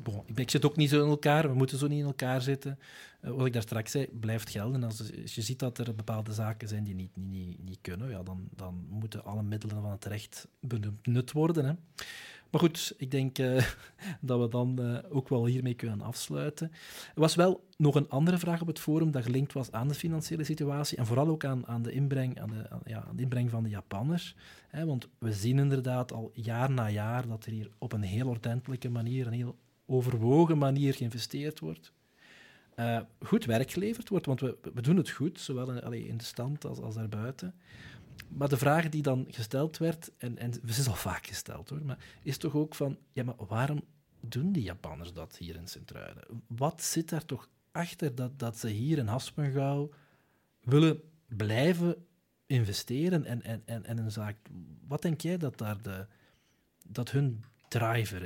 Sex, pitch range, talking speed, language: male, 115-150 Hz, 205 wpm, Dutch